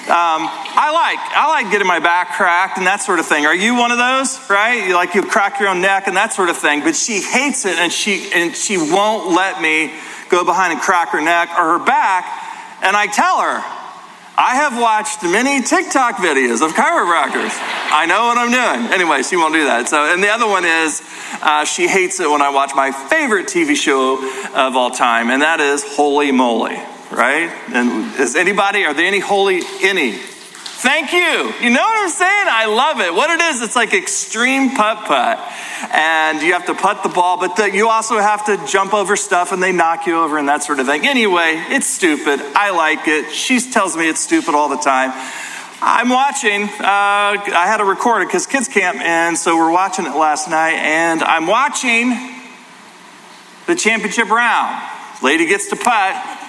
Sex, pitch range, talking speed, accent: male, 165-245 Hz, 205 wpm, American